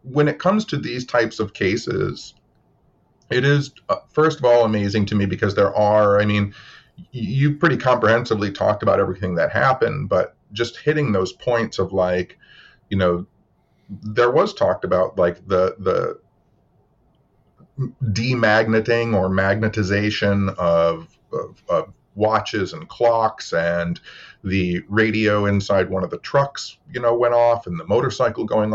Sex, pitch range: male, 100-120 Hz